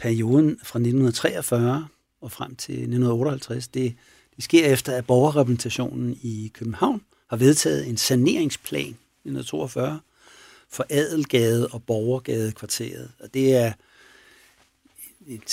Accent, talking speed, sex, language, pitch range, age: native, 110 wpm, male, Danish, 110-130 Hz, 60-79